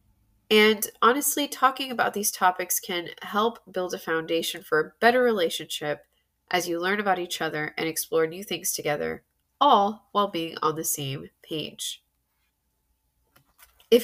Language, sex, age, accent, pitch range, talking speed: English, female, 20-39, American, 165-225 Hz, 145 wpm